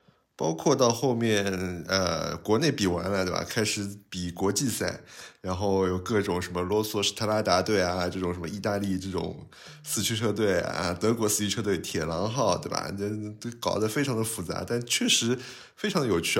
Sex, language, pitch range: male, Chinese, 100-130 Hz